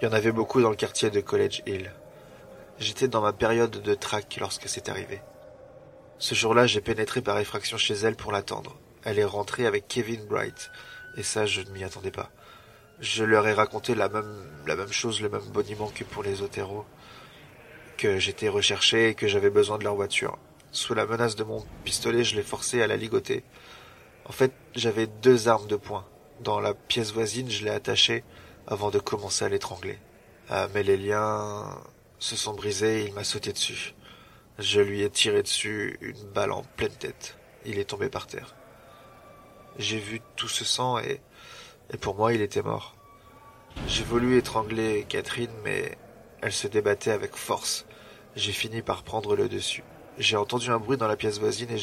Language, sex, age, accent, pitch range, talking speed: French, male, 20-39, French, 105-125 Hz, 190 wpm